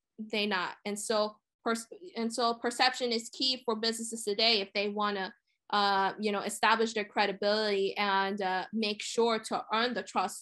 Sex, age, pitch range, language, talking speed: female, 20-39, 200-220 Hz, English, 180 wpm